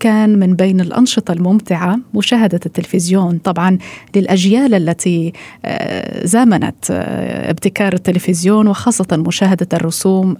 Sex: female